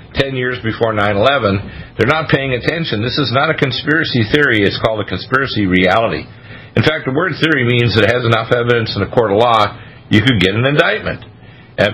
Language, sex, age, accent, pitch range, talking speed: English, male, 50-69, American, 110-130 Hz, 205 wpm